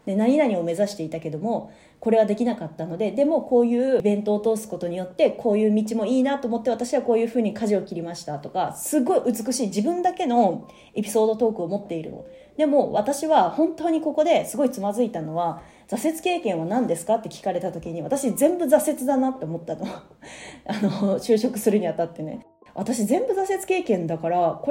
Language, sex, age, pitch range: Japanese, female, 30-49, 175-255 Hz